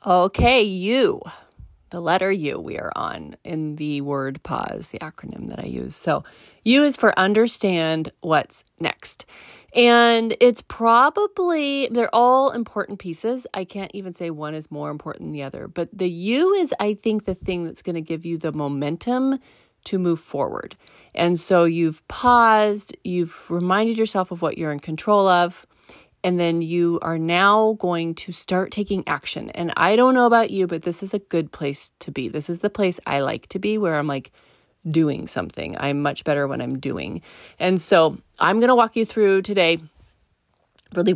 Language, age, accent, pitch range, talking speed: English, 30-49, American, 160-215 Hz, 185 wpm